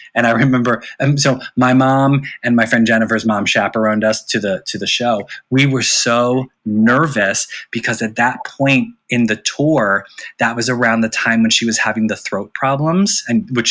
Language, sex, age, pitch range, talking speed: English, male, 20-39, 110-130 Hz, 195 wpm